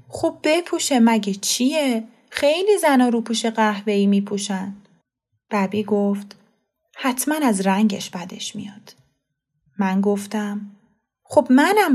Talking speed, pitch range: 110 wpm, 190-245 Hz